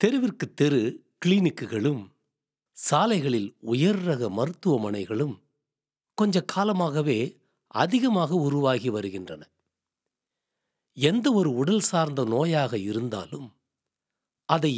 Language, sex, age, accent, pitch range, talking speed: Tamil, male, 60-79, native, 125-210 Hz, 75 wpm